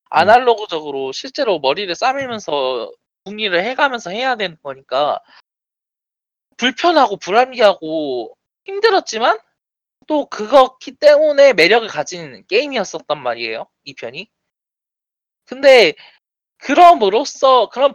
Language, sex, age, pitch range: Korean, male, 20-39, 165-275 Hz